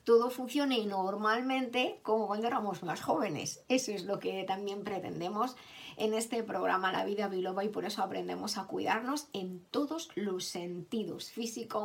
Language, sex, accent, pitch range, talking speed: Spanish, female, Spanish, 195-260 Hz, 160 wpm